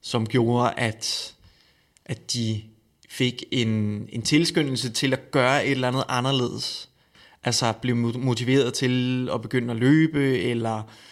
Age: 20-39